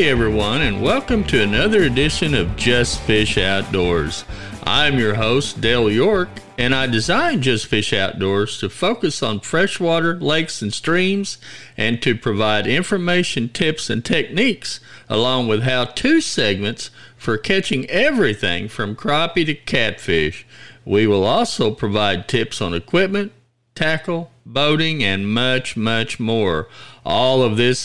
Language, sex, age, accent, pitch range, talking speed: English, male, 50-69, American, 110-155 Hz, 135 wpm